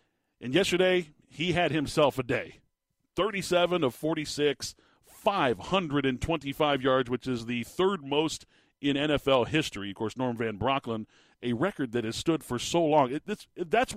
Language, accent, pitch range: English, American, 120-160 Hz